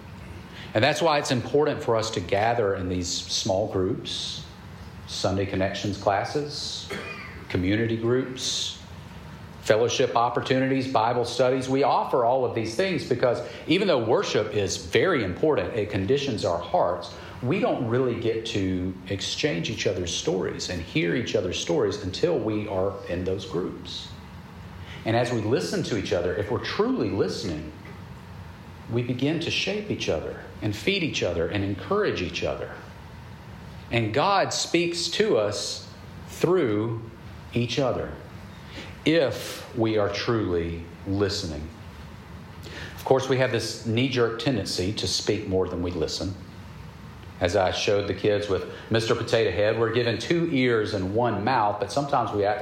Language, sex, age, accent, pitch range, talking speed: English, male, 40-59, American, 90-120 Hz, 150 wpm